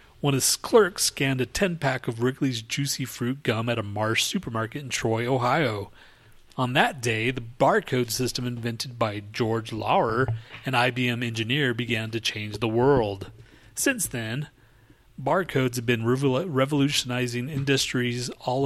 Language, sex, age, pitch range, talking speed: English, male, 40-59, 110-135 Hz, 140 wpm